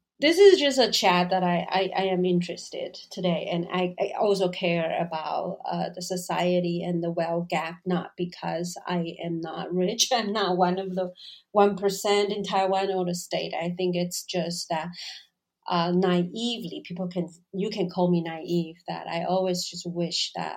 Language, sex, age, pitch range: Chinese, female, 30-49, 170-190 Hz